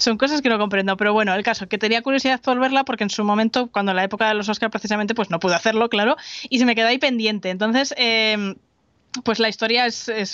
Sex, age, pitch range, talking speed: female, 20-39, 200-250 Hz, 255 wpm